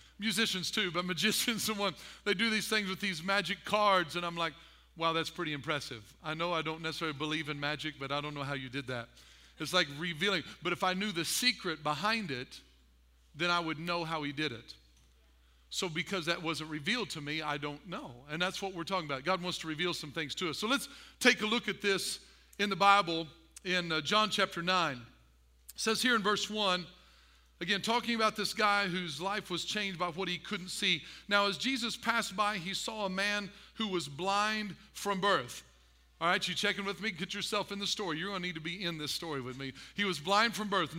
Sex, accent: male, American